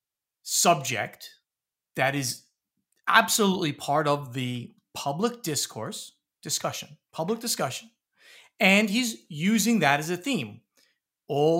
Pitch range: 125-180 Hz